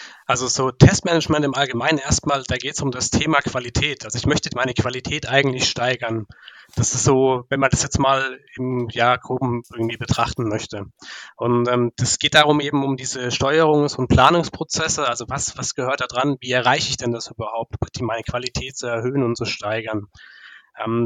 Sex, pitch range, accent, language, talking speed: male, 120-140 Hz, German, German, 190 wpm